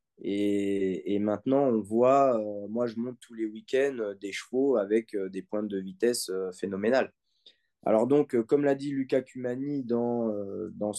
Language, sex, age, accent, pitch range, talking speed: French, male, 20-39, French, 100-125 Hz, 155 wpm